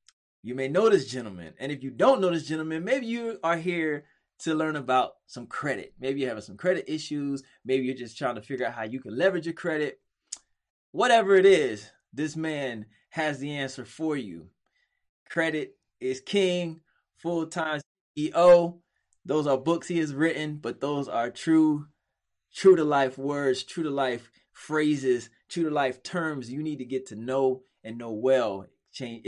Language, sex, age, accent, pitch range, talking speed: English, male, 20-39, American, 130-170 Hz, 170 wpm